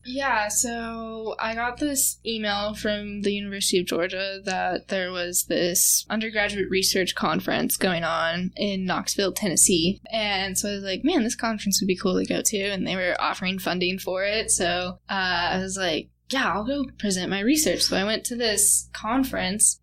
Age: 10-29